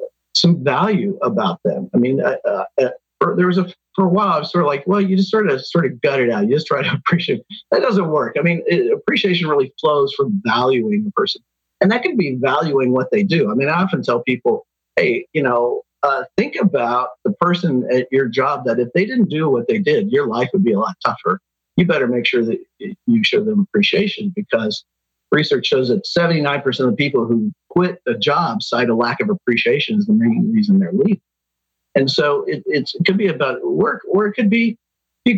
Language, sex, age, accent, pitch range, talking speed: English, male, 50-69, American, 130-210 Hz, 225 wpm